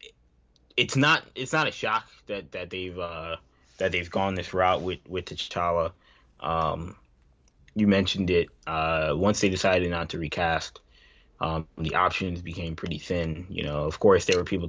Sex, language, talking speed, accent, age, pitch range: male, English, 170 wpm, American, 20-39, 80-100 Hz